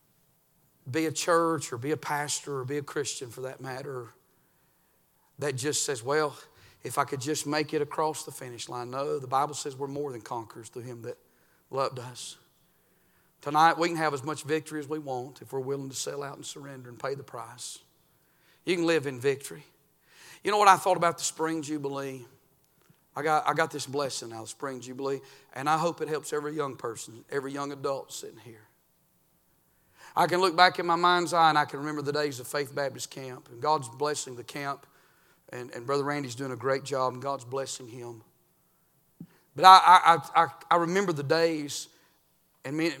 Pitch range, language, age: 135-160 Hz, English, 40-59